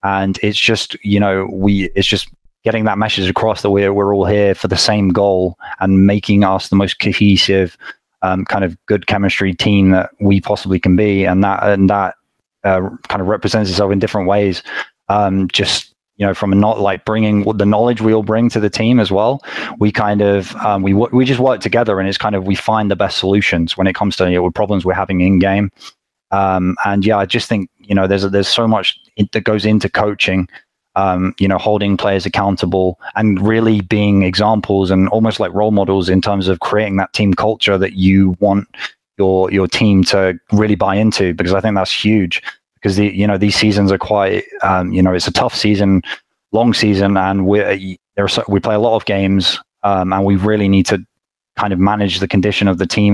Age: 20-39